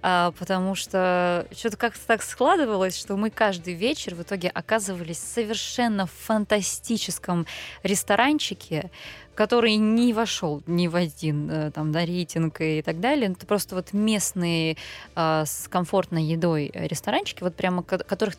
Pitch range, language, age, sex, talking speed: 170-215 Hz, Russian, 20-39, female, 135 wpm